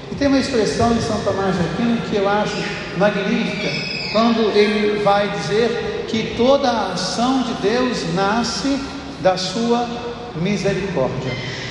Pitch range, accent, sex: 190-230 Hz, Brazilian, male